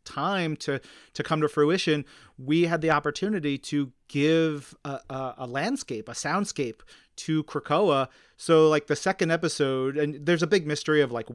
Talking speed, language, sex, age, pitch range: 170 wpm, English, male, 30-49, 135-160 Hz